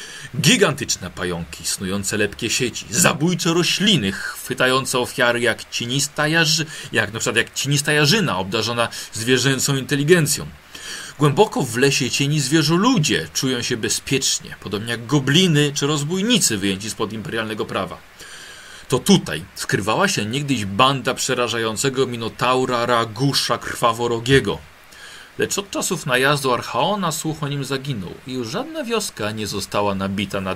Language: Polish